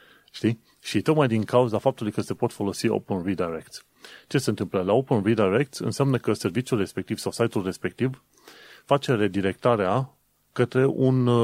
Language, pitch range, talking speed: Romanian, 105-130 Hz, 145 wpm